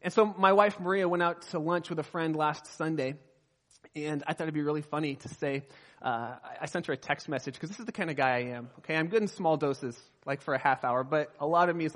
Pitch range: 165-225 Hz